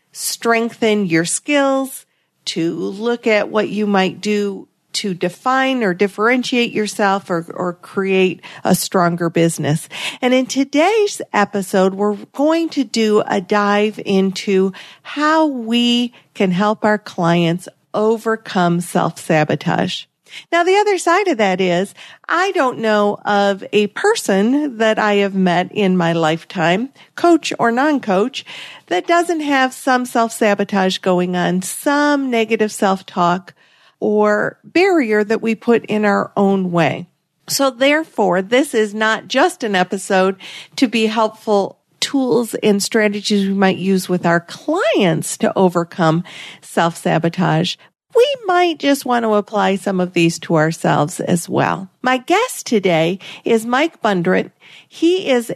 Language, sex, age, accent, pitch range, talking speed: English, female, 50-69, American, 185-255 Hz, 135 wpm